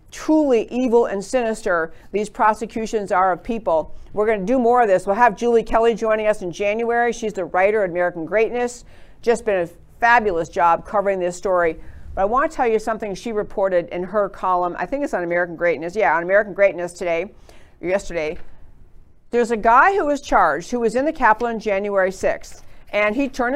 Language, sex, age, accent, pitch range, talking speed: English, female, 50-69, American, 195-255 Hz, 205 wpm